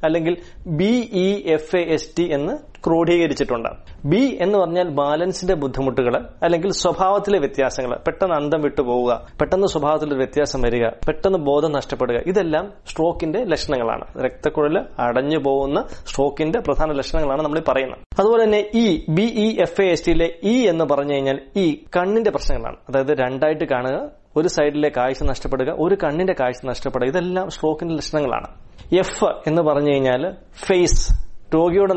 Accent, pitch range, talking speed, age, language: native, 145-180 Hz, 135 wpm, 20-39, Malayalam